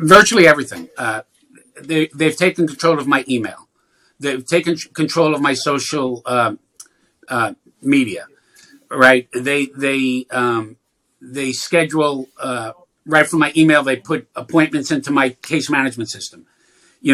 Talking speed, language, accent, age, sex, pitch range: 135 wpm, English, American, 50-69, male, 140-180 Hz